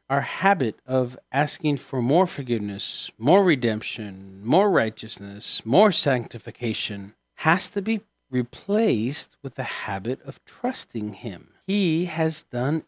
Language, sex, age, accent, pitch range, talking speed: English, male, 50-69, American, 115-175 Hz, 120 wpm